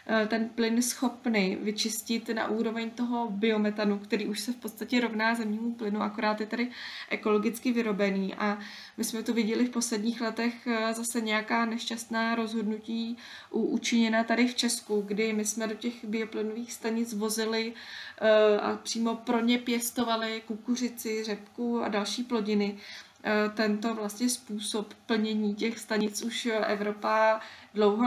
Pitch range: 215-235 Hz